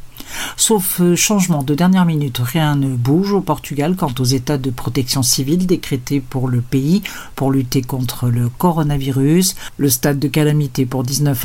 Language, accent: Portuguese, French